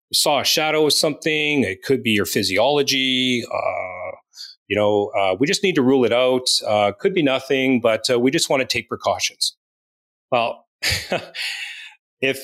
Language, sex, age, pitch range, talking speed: English, male, 40-59, 105-135 Hz, 170 wpm